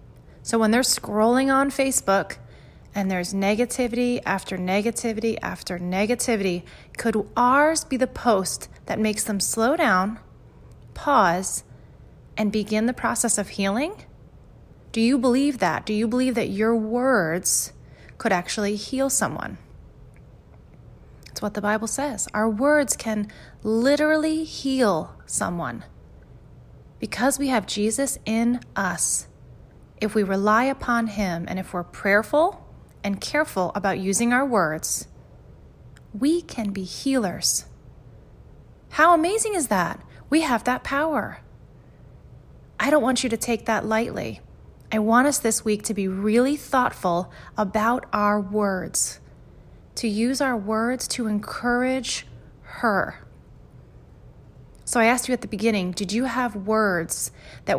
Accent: American